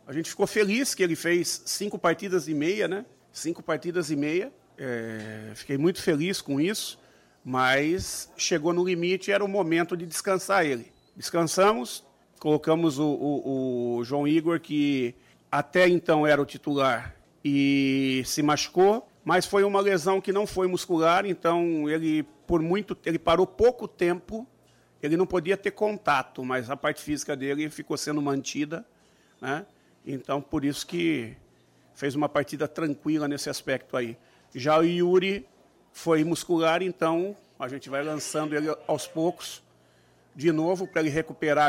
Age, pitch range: 40-59, 145-175 Hz